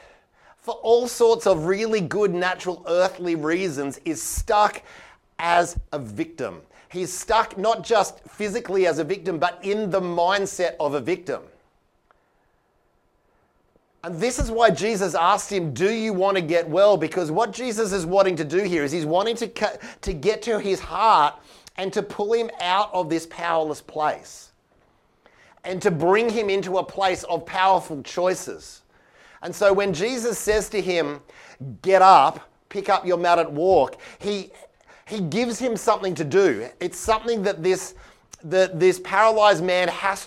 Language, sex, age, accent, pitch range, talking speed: English, male, 30-49, Australian, 170-205 Hz, 160 wpm